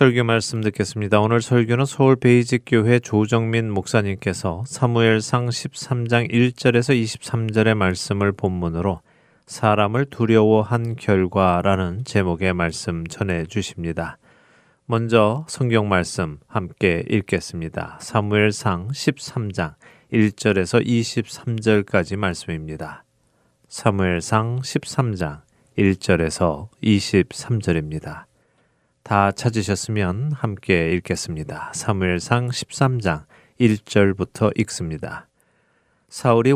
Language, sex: Korean, male